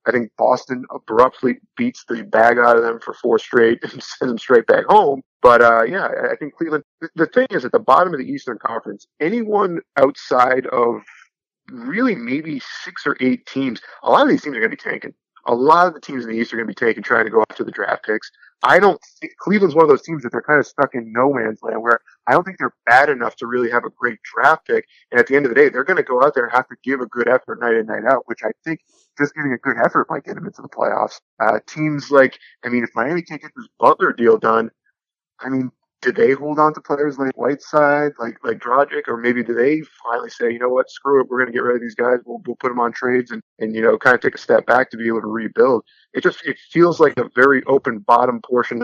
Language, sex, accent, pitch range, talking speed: English, male, American, 120-165 Hz, 270 wpm